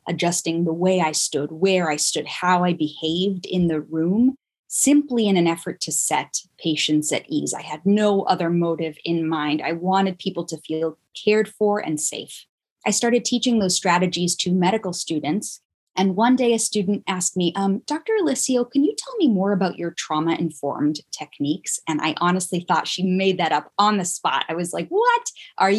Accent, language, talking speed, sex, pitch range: American, English, 190 wpm, female, 165-205 Hz